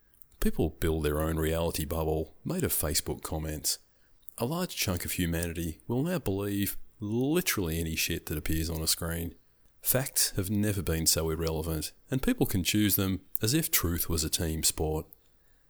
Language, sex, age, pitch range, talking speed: English, male, 30-49, 75-95 Hz, 170 wpm